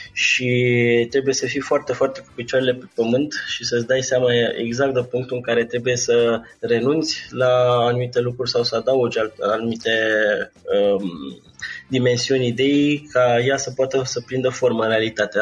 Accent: native